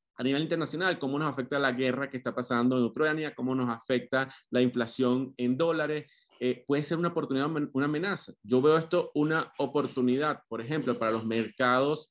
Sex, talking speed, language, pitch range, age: male, 185 wpm, Spanish, 125-155 Hz, 30-49